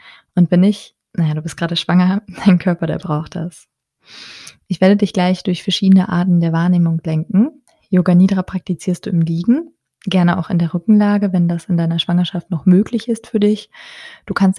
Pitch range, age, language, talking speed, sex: 165-190 Hz, 20-39, German, 190 wpm, female